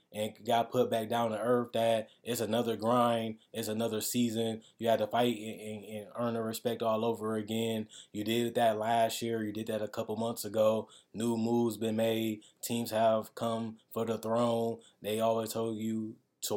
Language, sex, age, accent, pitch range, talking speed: English, male, 20-39, American, 110-120 Hz, 190 wpm